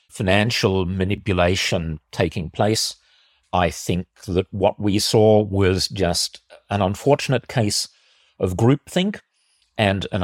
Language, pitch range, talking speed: English, 90-115 Hz, 110 wpm